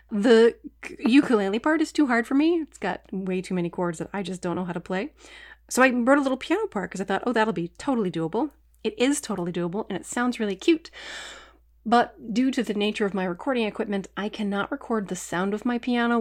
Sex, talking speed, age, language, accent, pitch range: female, 235 wpm, 30-49, English, American, 185-245 Hz